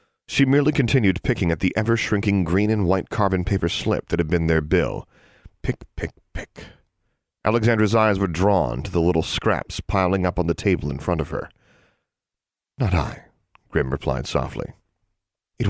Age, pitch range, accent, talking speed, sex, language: 30-49, 90-125 Hz, American, 170 wpm, male, English